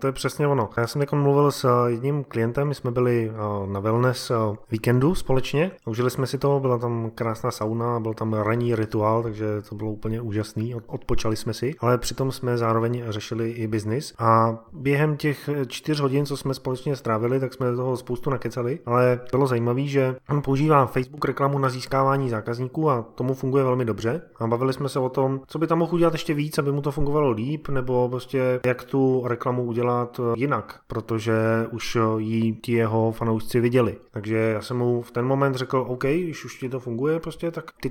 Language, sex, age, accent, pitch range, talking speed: Czech, male, 20-39, native, 115-140 Hz, 195 wpm